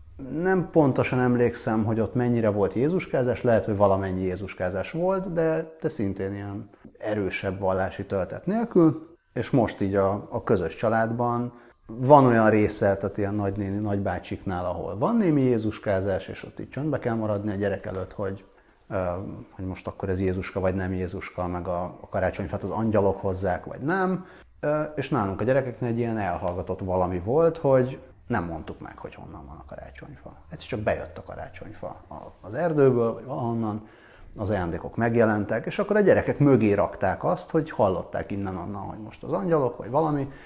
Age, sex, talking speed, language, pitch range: 30-49, male, 170 wpm, Hungarian, 95-130 Hz